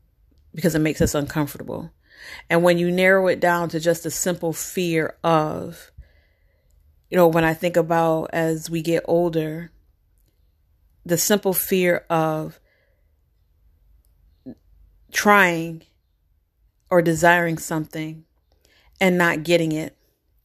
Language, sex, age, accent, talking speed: English, female, 40-59, American, 115 wpm